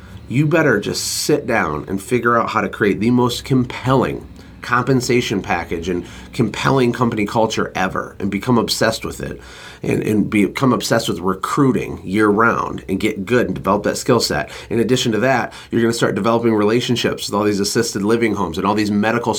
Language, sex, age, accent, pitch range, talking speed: English, male, 30-49, American, 100-125 Hz, 190 wpm